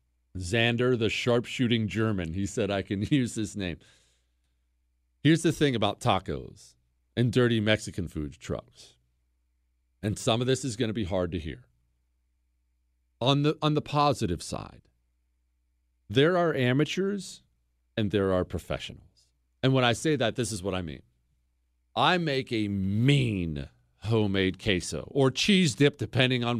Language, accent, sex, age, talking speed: English, American, male, 40-59, 145 wpm